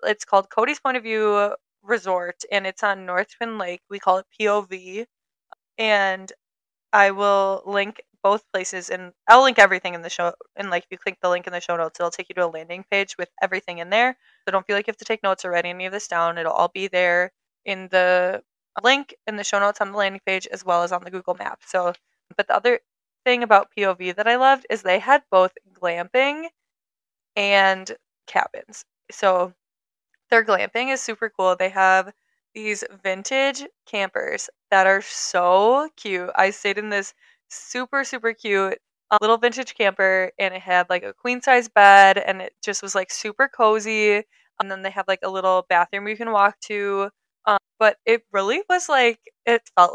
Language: English